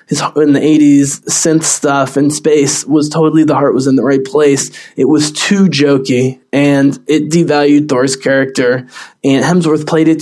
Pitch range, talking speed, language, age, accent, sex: 140-165 Hz, 170 wpm, English, 20-39, American, male